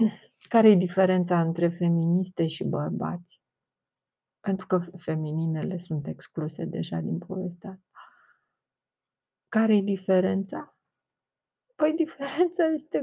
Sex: female